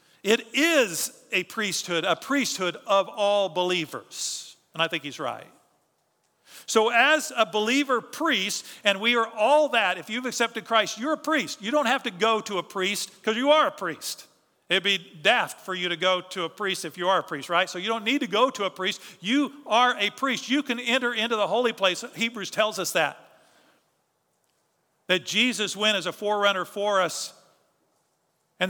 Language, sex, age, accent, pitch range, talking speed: English, male, 50-69, American, 170-230 Hz, 195 wpm